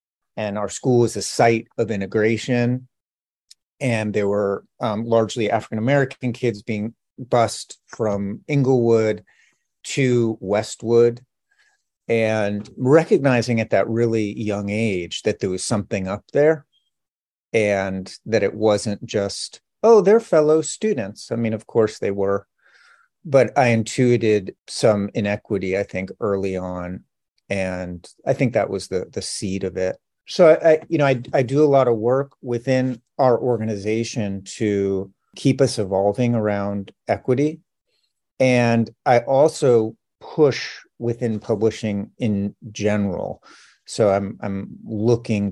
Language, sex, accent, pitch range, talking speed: English, male, American, 100-125 Hz, 130 wpm